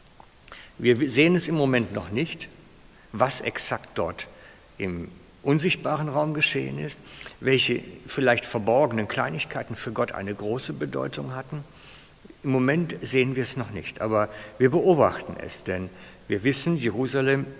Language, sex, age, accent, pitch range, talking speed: German, male, 60-79, German, 105-135 Hz, 135 wpm